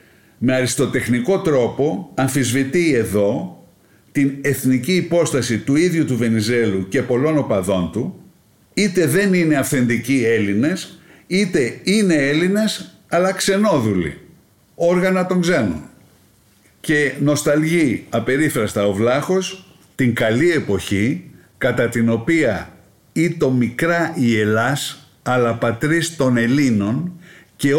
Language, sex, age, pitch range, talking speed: Greek, male, 50-69, 115-175 Hz, 110 wpm